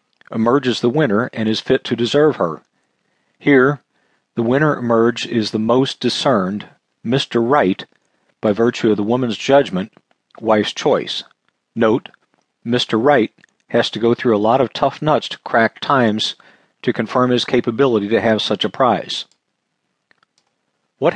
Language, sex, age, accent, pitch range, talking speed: English, male, 50-69, American, 110-135 Hz, 145 wpm